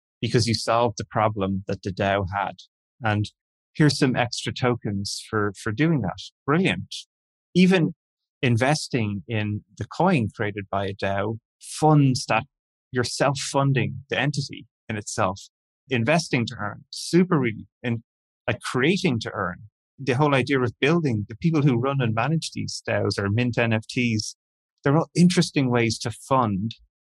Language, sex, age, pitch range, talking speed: English, male, 30-49, 110-140 Hz, 150 wpm